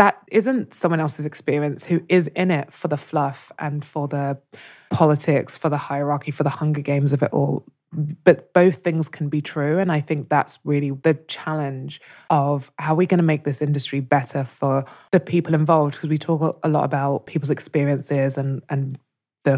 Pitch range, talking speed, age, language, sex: 140-160 Hz, 195 wpm, 20-39, English, female